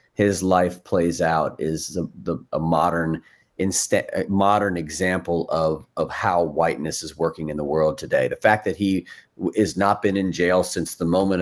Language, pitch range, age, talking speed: English, 85-100 Hz, 40-59, 185 wpm